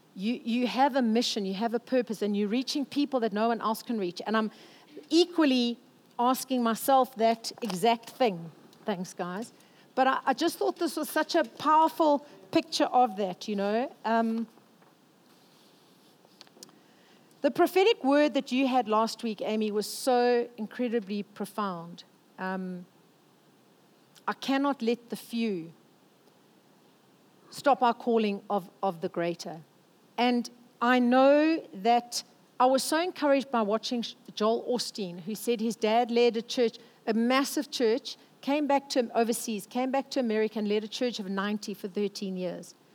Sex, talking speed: female, 155 wpm